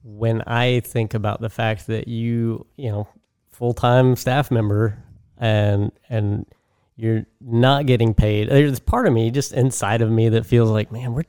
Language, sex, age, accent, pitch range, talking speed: English, male, 20-39, American, 105-120 Hz, 170 wpm